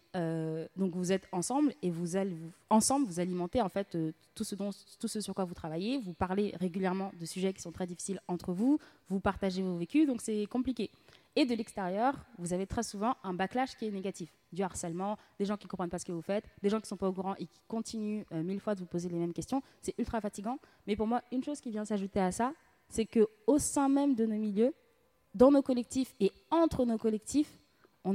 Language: French